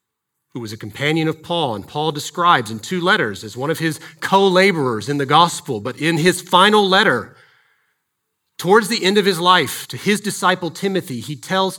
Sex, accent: male, American